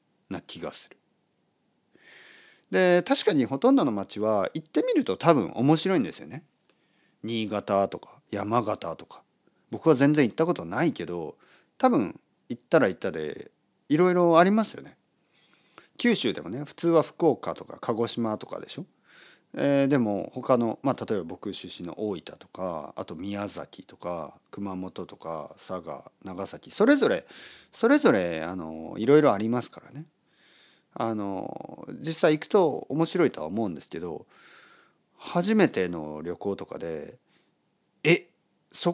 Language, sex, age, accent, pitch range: Japanese, male, 40-59, native, 110-180 Hz